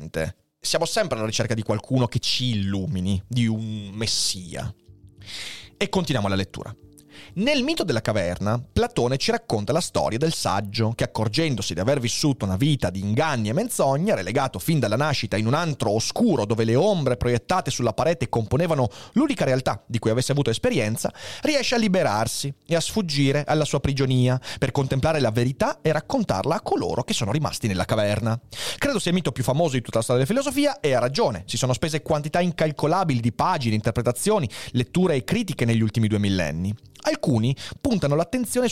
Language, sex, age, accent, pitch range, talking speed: Italian, male, 30-49, native, 105-150 Hz, 180 wpm